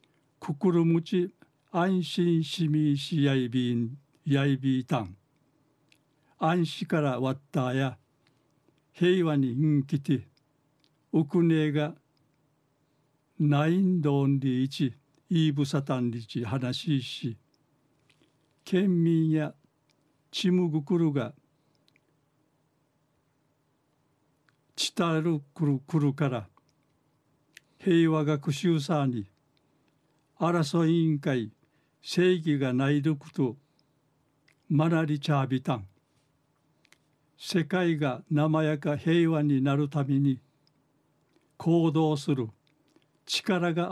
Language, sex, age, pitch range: Japanese, male, 60-79, 140-160 Hz